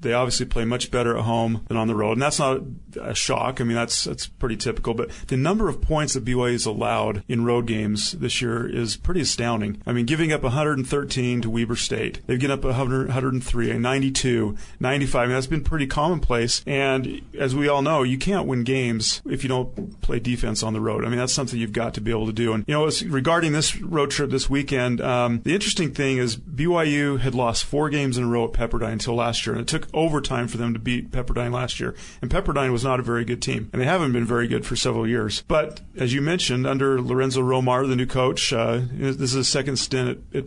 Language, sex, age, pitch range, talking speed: English, male, 30-49, 120-140 Hz, 245 wpm